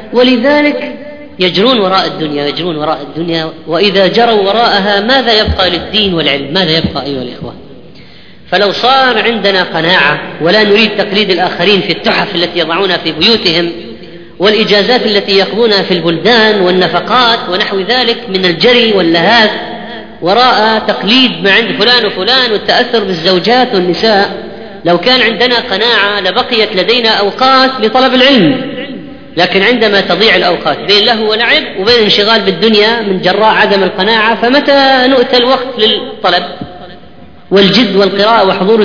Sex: female